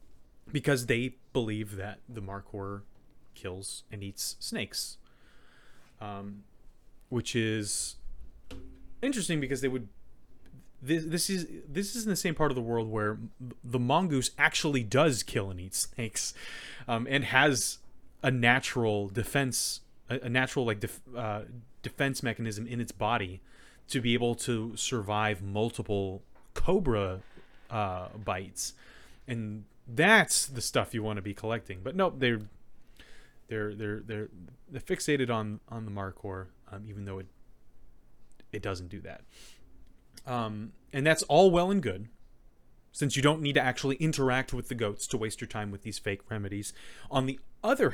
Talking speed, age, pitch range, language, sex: 150 wpm, 30-49, 100-130 Hz, English, male